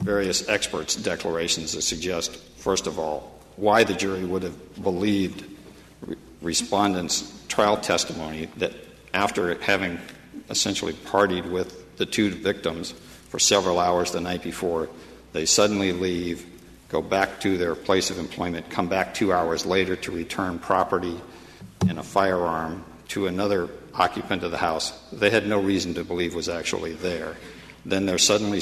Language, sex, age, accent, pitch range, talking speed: English, male, 60-79, American, 85-95 Hz, 150 wpm